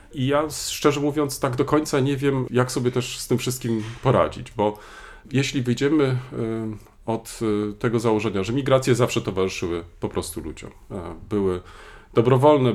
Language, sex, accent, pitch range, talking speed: Polish, male, native, 110-135 Hz, 145 wpm